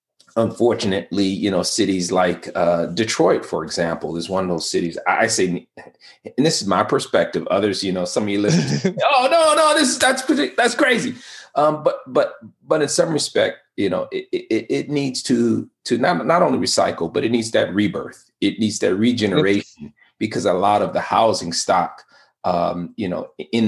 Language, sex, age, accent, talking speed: English, male, 40-59, American, 195 wpm